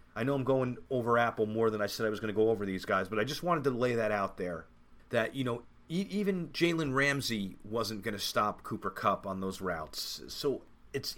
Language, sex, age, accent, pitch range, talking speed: English, male, 40-59, American, 100-125 Hz, 240 wpm